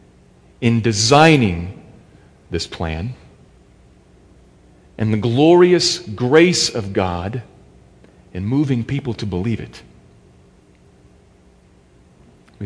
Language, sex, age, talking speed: English, male, 40-59, 80 wpm